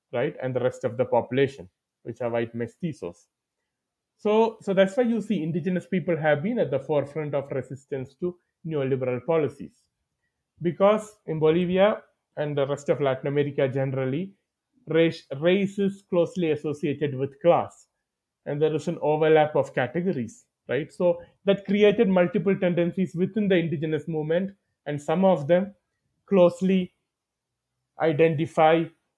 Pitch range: 130-170 Hz